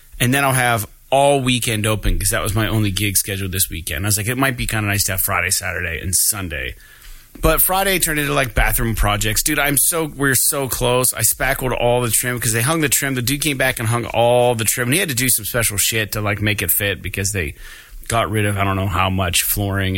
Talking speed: 260 wpm